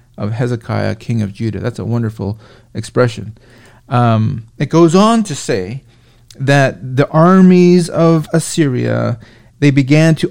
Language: English